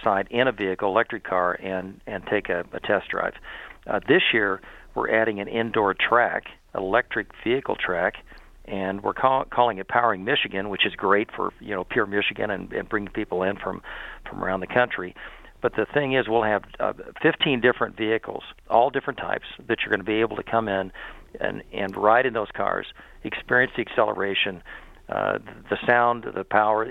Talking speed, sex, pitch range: 185 wpm, male, 105-125 Hz